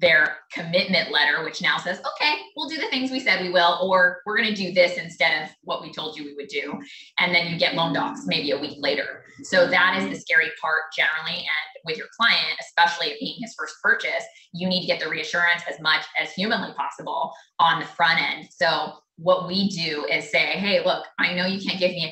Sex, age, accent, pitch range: female, 20-39, American, 160-185 Hz